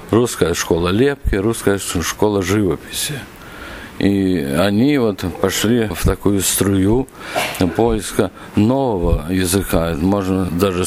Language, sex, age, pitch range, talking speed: Ukrainian, male, 50-69, 95-105 Hz, 105 wpm